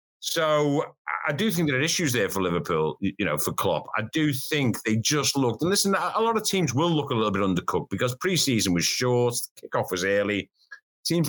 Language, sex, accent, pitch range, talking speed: English, male, British, 100-140 Hz, 215 wpm